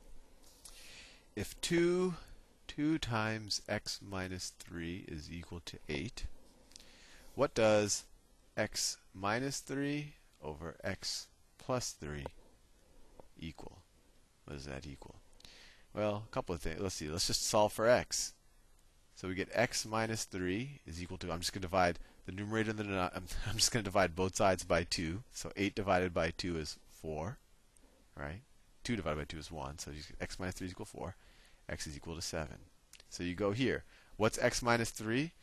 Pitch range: 80-105 Hz